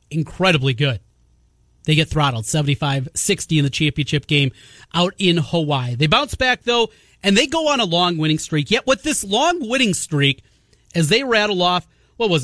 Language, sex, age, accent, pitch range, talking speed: English, male, 30-49, American, 150-195 Hz, 180 wpm